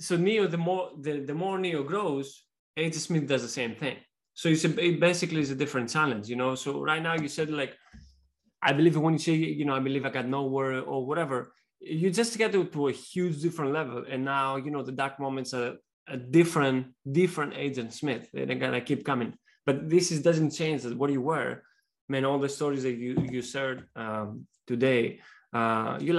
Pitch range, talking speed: 120-155 Hz, 215 wpm